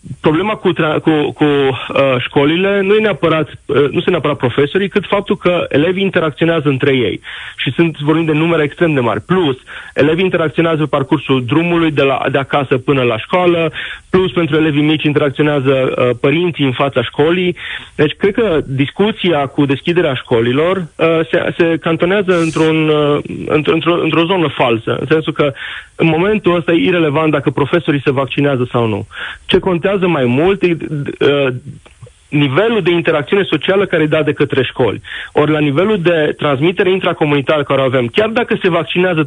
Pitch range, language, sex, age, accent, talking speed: 140-175 Hz, Romanian, male, 30-49, native, 170 wpm